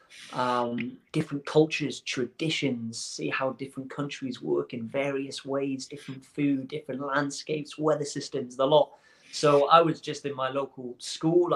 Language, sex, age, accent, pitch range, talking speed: English, male, 30-49, British, 130-150 Hz, 145 wpm